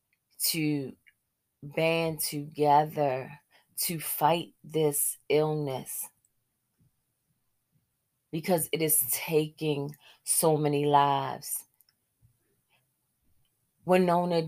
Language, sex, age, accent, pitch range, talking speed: English, female, 30-49, American, 125-165 Hz, 60 wpm